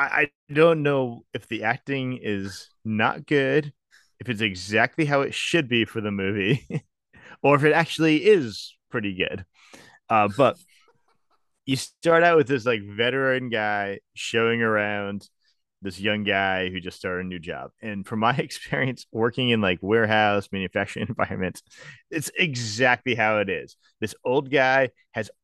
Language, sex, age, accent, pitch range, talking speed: English, male, 30-49, American, 105-135 Hz, 155 wpm